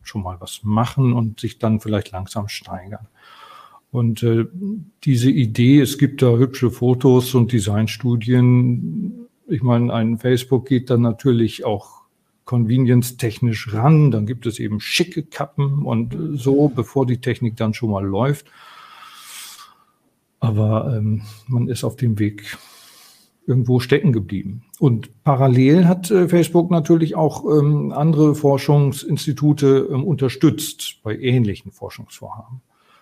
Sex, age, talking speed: male, 40-59, 130 wpm